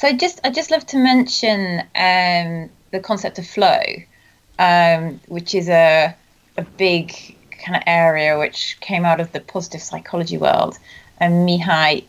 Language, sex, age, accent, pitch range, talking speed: English, female, 30-49, British, 165-185 Hz, 160 wpm